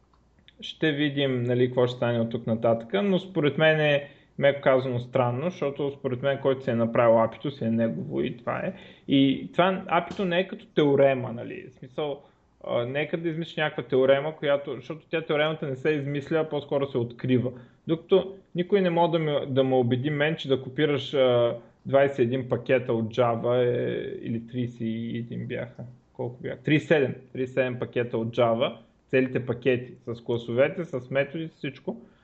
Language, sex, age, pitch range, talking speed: Bulgarian, male, 20-39, 125-155 Hz, 165 wpm